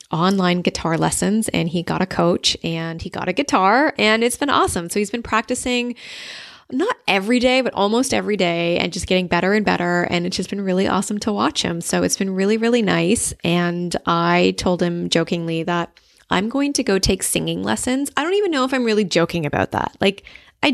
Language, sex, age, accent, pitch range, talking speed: English, female, 20-39, American, 165-220 Hz, 215 wpm